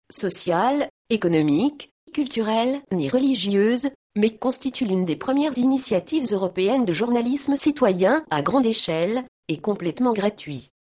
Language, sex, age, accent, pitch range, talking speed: French, female, 40-59, French, 175-260 Hz, 115 wpm